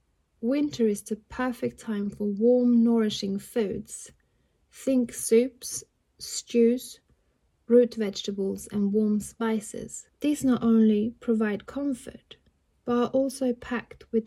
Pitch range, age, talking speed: 210-240 Hz, 30-49, 115 wpm